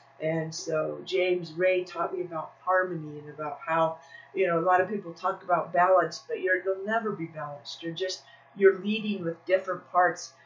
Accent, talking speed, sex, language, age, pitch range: American, 190 wpm, female, English, 30-49, 165-205 Hz